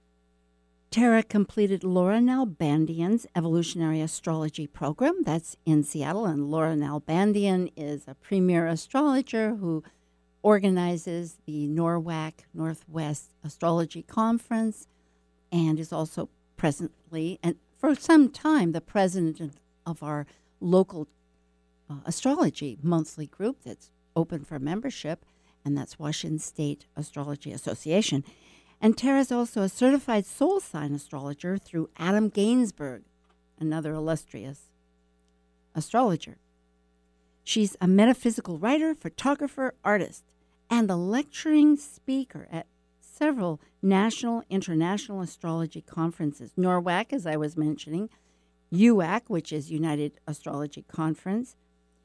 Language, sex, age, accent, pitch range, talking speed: English, female, 60-79, American, 145-210 Hz, 105 wpm